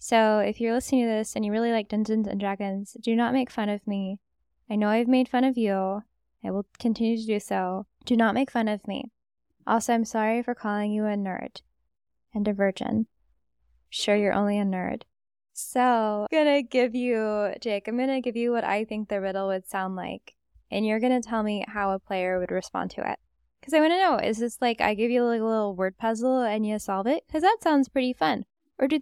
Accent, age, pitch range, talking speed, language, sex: American, 10-29, 210-255 Hz, 235 wpm, English, female